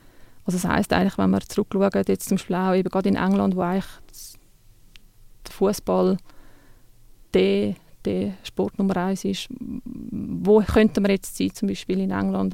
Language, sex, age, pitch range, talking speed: German, female, 20-39, 185-205 Hz, 150 wpm